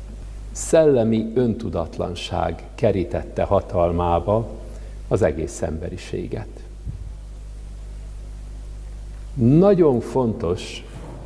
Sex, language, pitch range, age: male, Hungarian, 95-115 Hz, 60-79